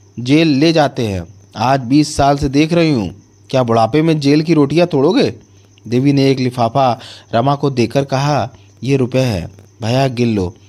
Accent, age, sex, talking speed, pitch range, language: native, 30-49, male, 180 wpm, 100-150 Hz, Hindi